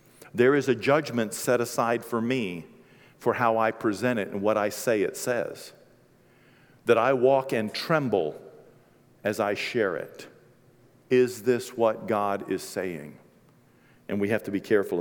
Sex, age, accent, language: male, 50-69, American, English